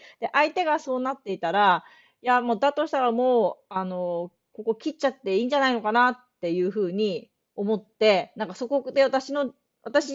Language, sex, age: Japanese, female, 40-59